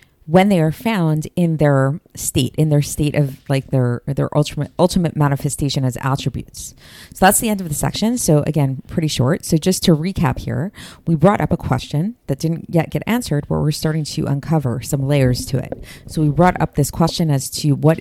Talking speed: 210 wpm